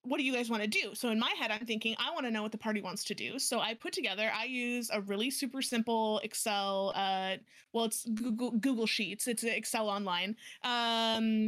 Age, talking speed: 30-49, 230 wpm